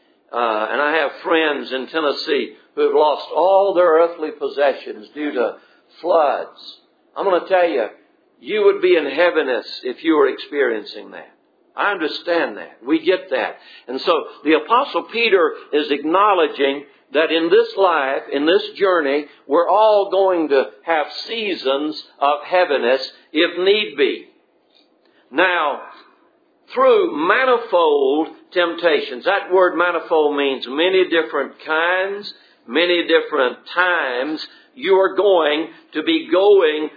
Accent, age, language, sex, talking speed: American, 60-79, English, male, 135 wpm